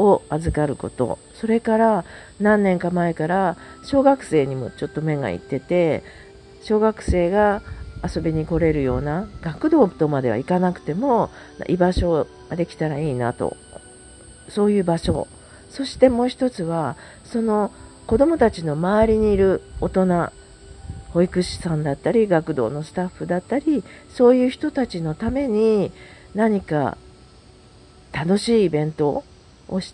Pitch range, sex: 150-215 Hz, female